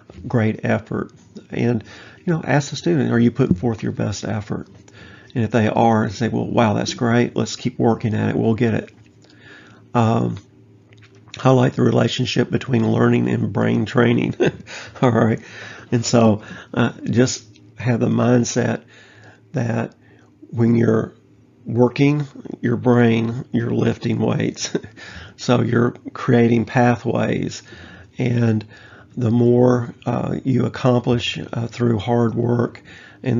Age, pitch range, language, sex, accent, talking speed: 50-69, 110-120 Hz, English, male, American, 135 wpm